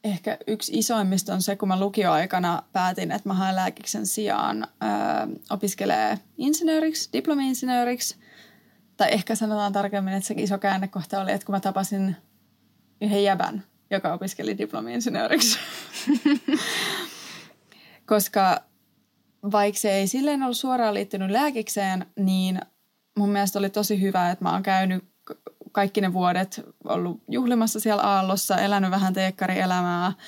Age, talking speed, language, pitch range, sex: 20-39, 125 wpm, Finnish, 190-220 Hz, female